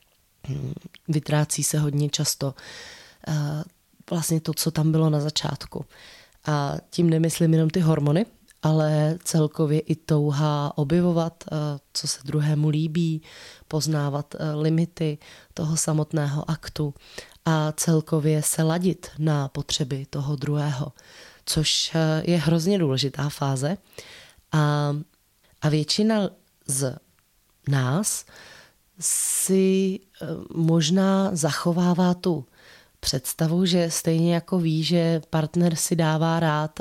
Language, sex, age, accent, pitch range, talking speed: Czech, female, 20-39, native, 150-170 Hz, 105 wpm